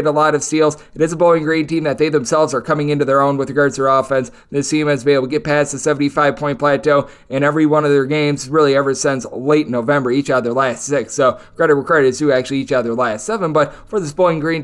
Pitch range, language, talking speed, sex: 140-160 Hz, English, 285 wpm, male